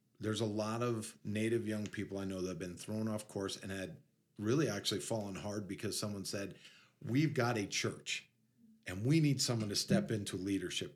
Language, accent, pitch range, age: English, American, 105-125 Hz, 40-59